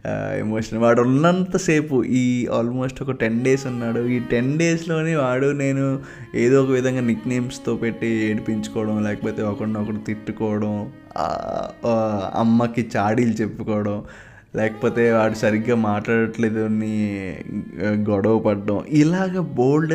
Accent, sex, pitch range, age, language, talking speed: native, male, 105-130 Hz, 20-39, Telugu, 105 wpm